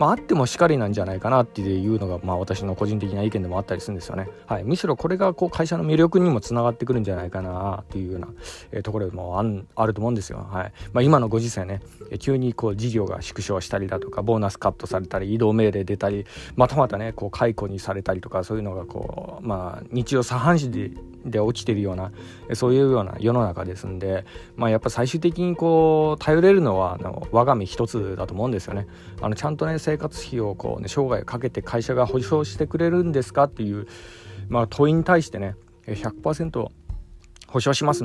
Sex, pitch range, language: male, 95-135 Hz, Japanese